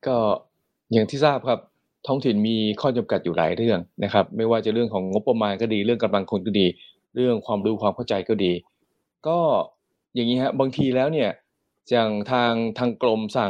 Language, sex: Thai, male